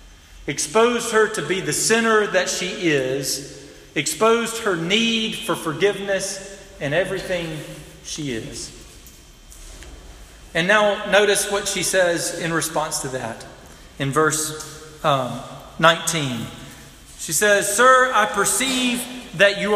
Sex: male